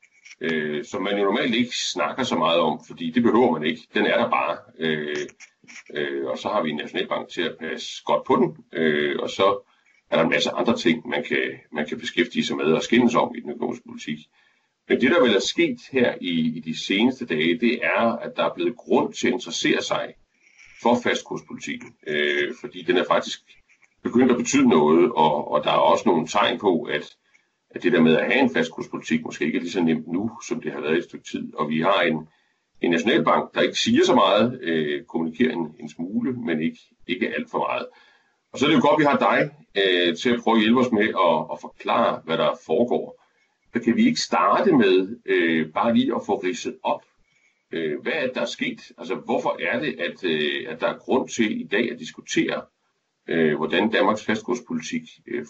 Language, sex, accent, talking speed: Danish, male, native, 220 wpm